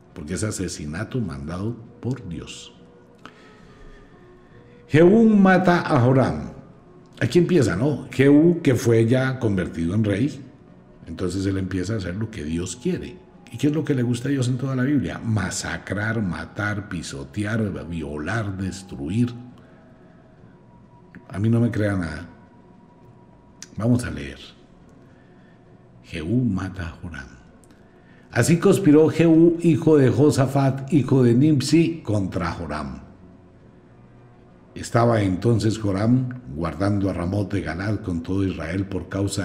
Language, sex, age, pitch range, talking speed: Spanish, male, 60-79, 80-125 Hz, 130 wpm